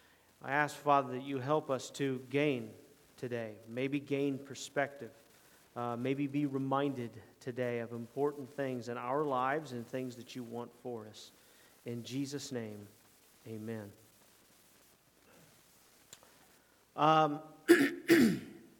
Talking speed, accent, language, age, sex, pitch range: 115 wpm, American, English, 40-59, male, 125-150 Hz